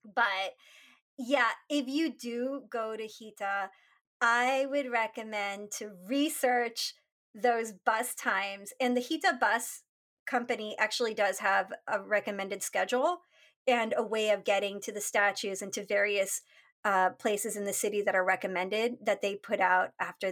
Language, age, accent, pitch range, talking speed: English, 30-49, American, 205-255 Hz, 150 wpm